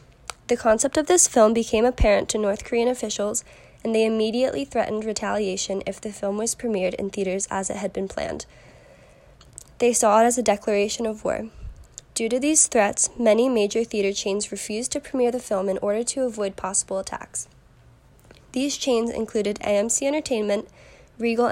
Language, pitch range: English, 205-240 Hz